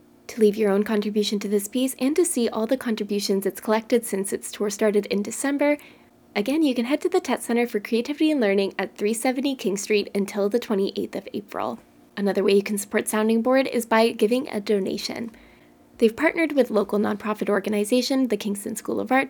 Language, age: English, 20-39